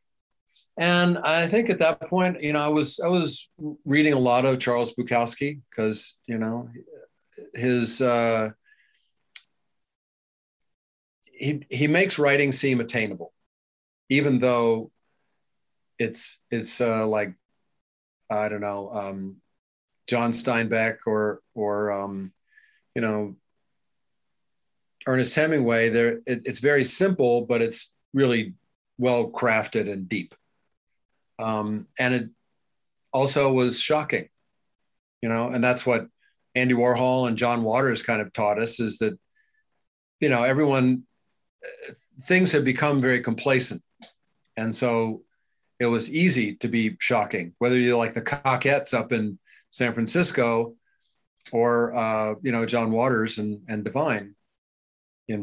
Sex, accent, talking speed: male, American, 125 wpm